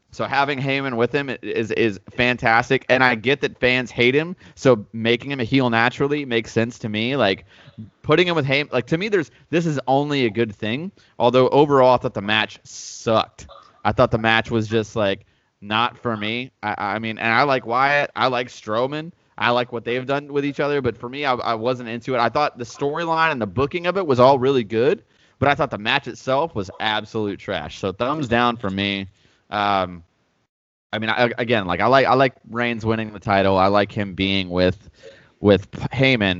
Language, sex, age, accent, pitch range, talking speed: English, male, 20-39, American, 105-130 Hz, 215 wpm